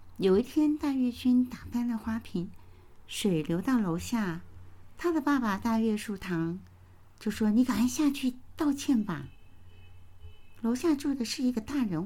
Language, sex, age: Chinese, female, 60-79